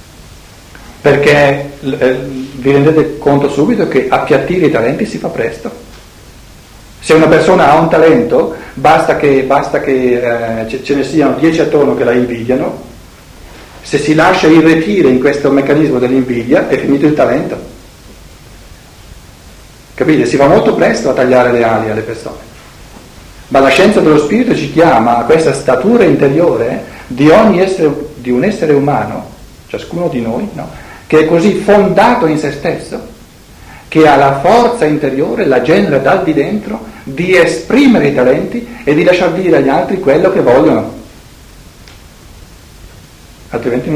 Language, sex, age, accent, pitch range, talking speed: Italian, male, 50-69, native, 125-160 Hz, 145 wpm